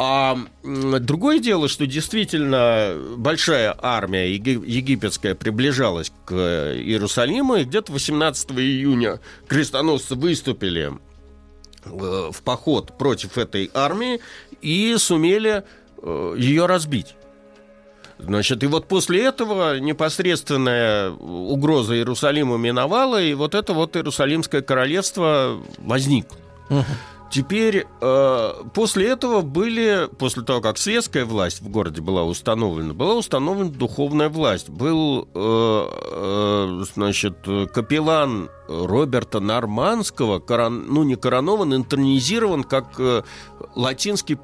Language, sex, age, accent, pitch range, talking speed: Russian, male, 50-69, native, 100-155 Hz, 100 wpm